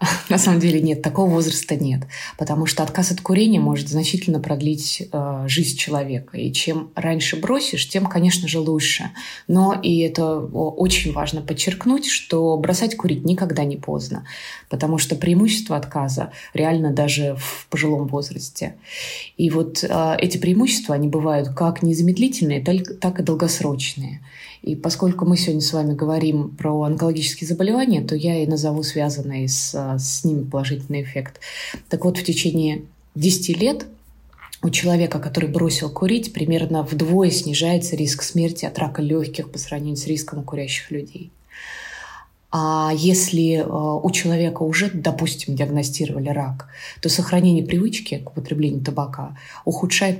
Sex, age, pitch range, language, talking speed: female, 20-39, 145-175 Hz, Russian, 140 wpm